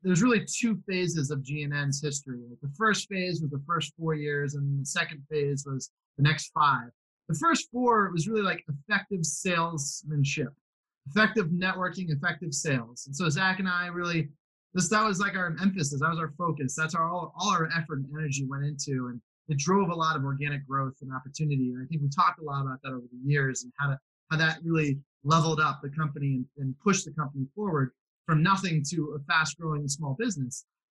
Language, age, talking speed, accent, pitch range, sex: English, 20-39, 210 wpm, American, 140-175 Hz, male